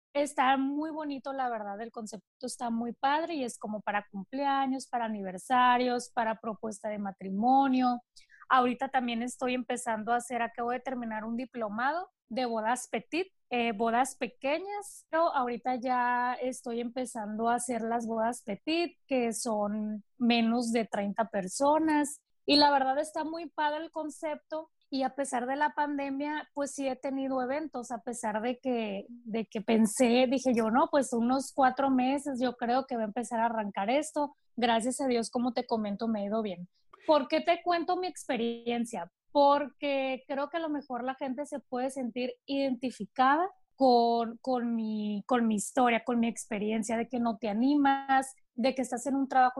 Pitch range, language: 230-275 Hz, Spanish